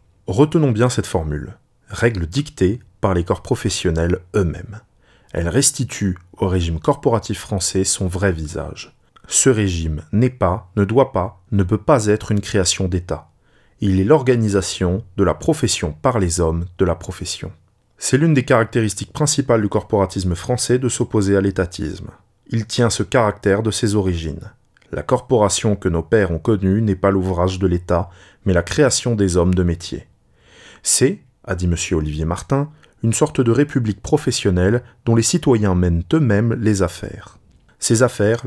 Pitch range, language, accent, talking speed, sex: 95-115 Hz, French, French, 160 wpm, male